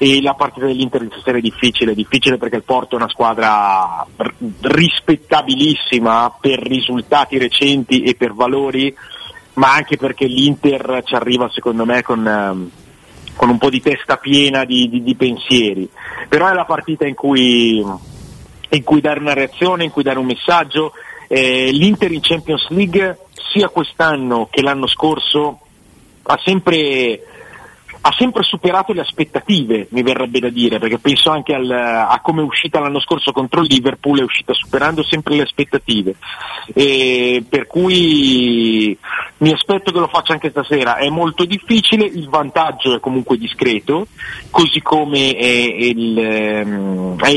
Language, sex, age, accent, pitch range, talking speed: Italian, male, 40-59, native, 125-155 Hz, 150 wpm